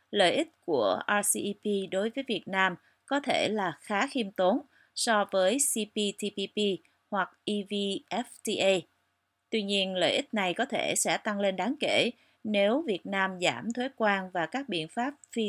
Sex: female